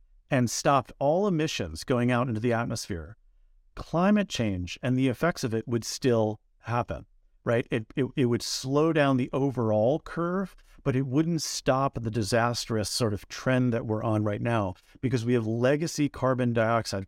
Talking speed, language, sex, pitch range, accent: 170 wpm, English, male, 105-135 Hz, American